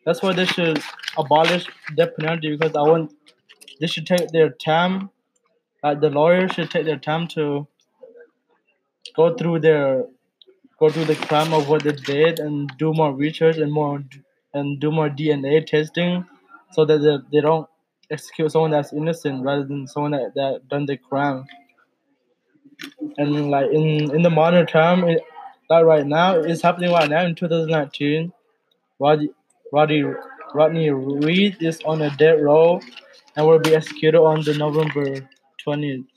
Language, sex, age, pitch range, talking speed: English, male, 20-39, 150-170 Hz, 160 wpm